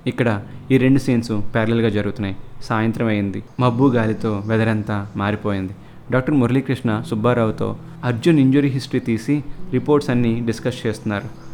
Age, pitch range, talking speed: 20-39, 110-130 Hz, 120 wpm